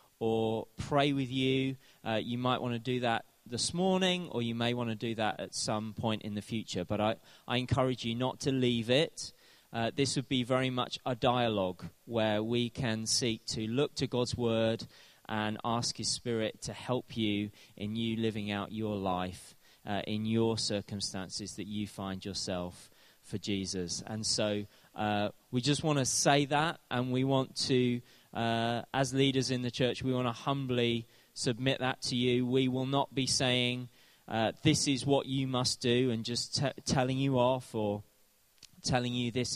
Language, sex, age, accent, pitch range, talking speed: English, male, 30-49, British, 105-130 Hz, 190 wpm